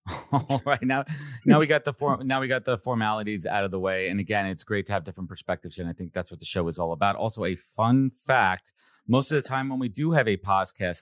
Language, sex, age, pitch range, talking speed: English, male, 30-49, 90-120 Hz, 265 wpm